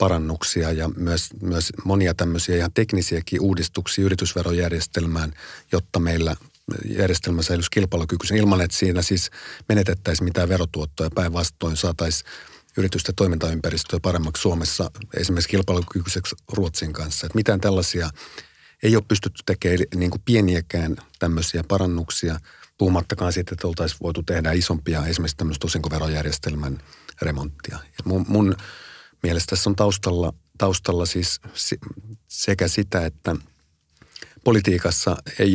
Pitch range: 85-95 Hz